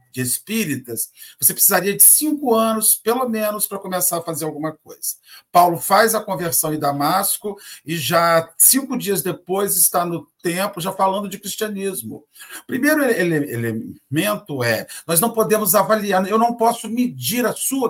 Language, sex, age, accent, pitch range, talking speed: Portuguese, male, 50-69, Brazilian, 165-230 Hz, 160 wpm